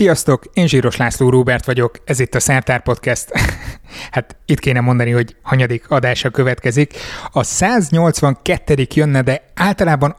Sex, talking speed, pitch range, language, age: male, 140 wpm, 125-150 Hz, Hungarian, 30-49